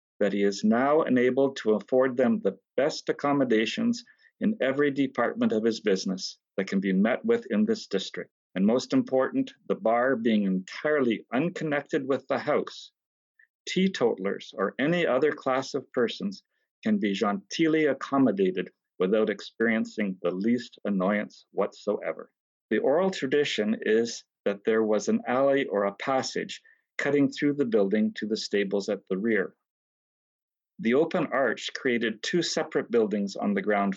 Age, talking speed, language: 50-69, 150 wpm, English